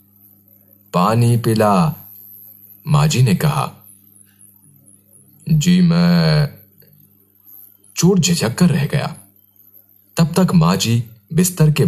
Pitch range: 100-165 Hz